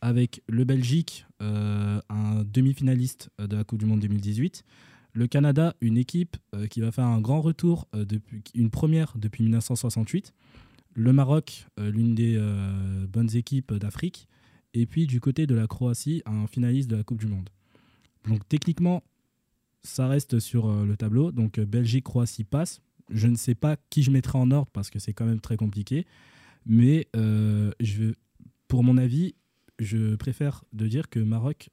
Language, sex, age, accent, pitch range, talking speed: French, male, 20-39, French, 110-130 Hz, 175 wpm